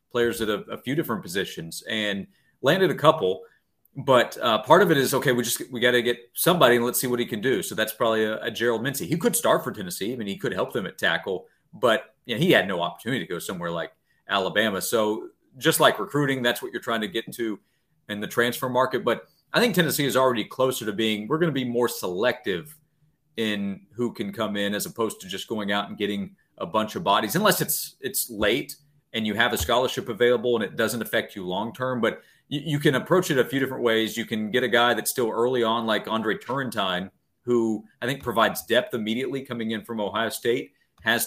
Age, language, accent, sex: 30-49, English, American, male